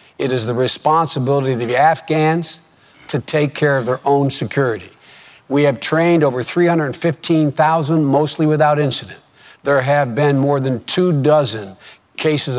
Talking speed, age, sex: 145 wpm, 60-79, male